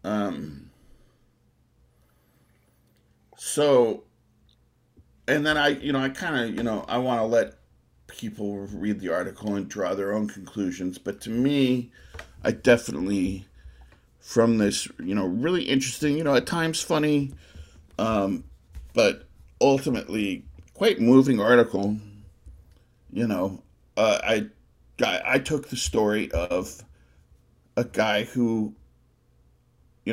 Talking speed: 120 wpm